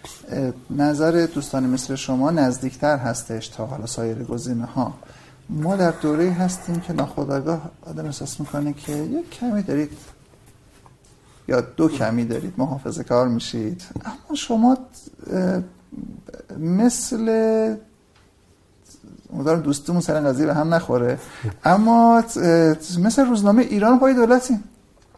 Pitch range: 130-200 Hz